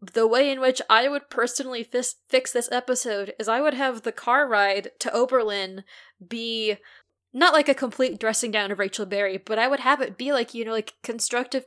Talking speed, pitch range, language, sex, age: 205 wpm, 210-255 Hz, English, female, 10-29